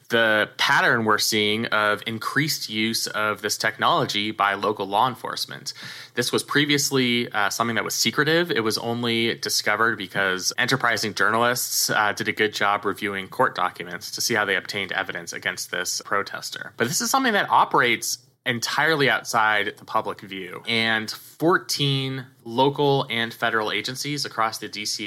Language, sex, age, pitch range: English, male, 20-39, 105-130 Hz